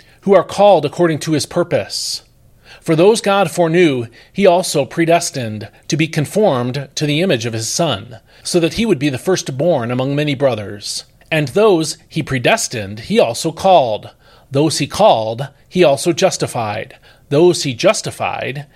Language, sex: English, male